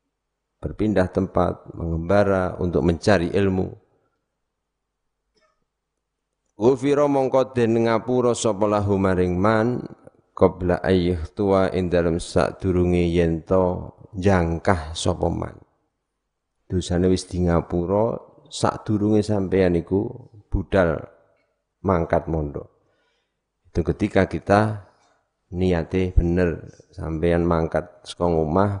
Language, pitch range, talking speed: Indonesian, 80-95 Hz, 75 wpm